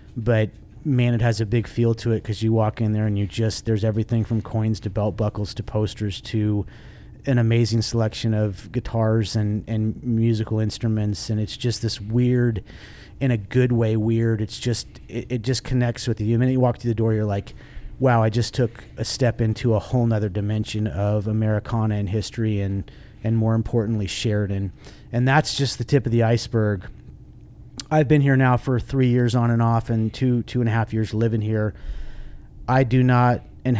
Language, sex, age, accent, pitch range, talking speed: English, male, 30-49, American, 110-120 Hz, 205 wpm